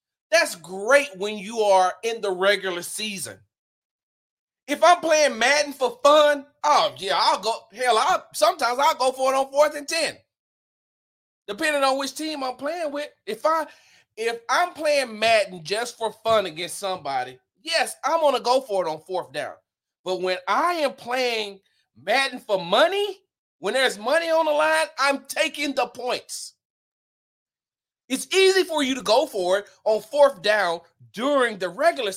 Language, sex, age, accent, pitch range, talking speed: English, male, 40-59, American, 215-300 Hz, 170 wpm